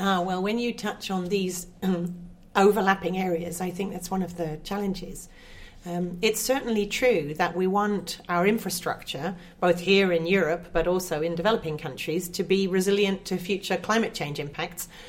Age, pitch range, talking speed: 40-59, 170-200 Hz, 165 wpm